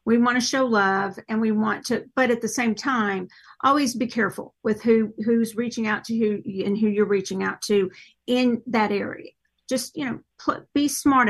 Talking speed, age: 205 wpm, 50-69